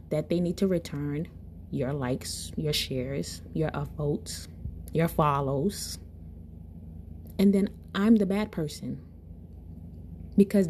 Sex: female